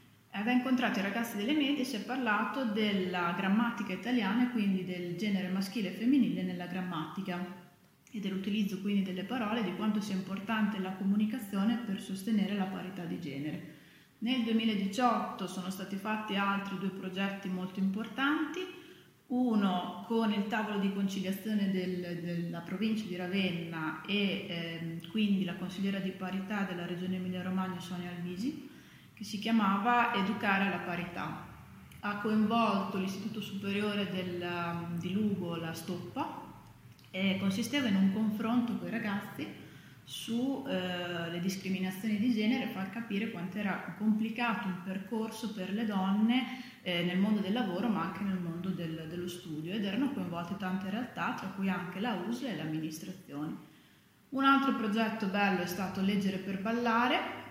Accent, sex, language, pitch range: native, female, Italian, 185-220 Hz